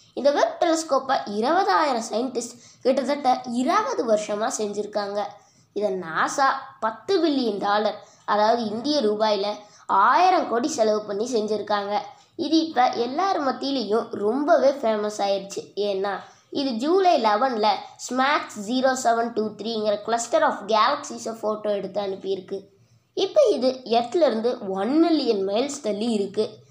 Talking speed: 110 wpm